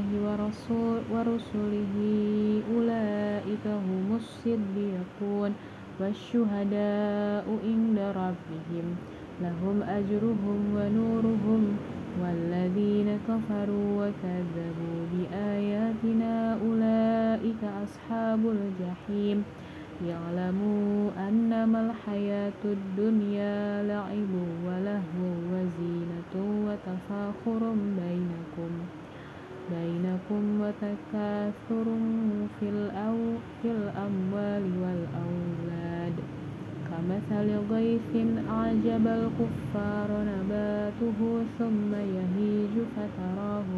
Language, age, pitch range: Indonesian, 20-39, 180-215 Hz